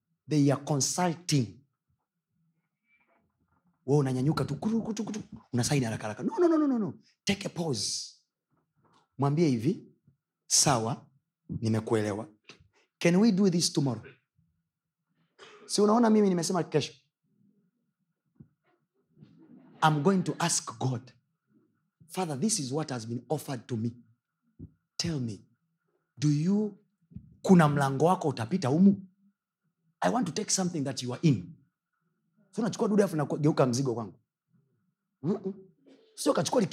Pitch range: 140-200 Hz